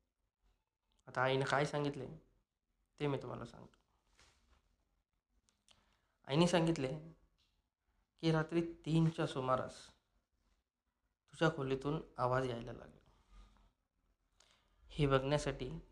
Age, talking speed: 20-39, 65 wpm